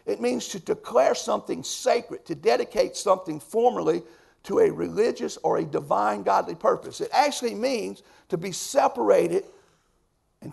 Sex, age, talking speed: male, 50-69, 140 wpm